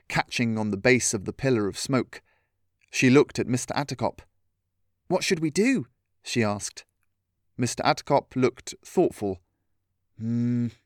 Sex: male